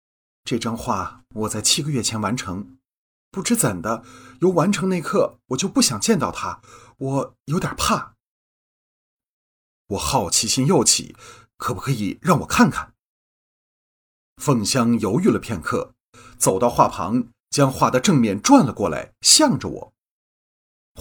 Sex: male